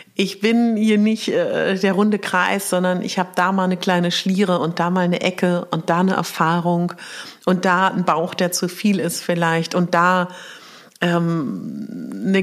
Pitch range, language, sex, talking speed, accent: 165-205 Hz, German, female, 185 wpm, German